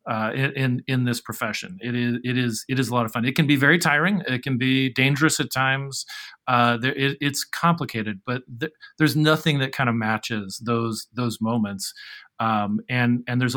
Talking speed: 210 wpm